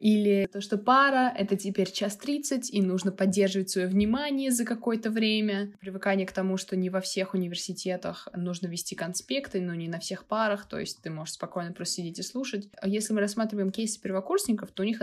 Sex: female